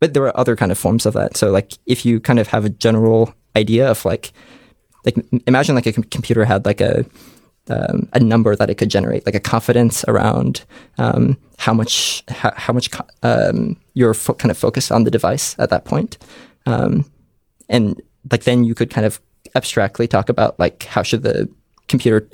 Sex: male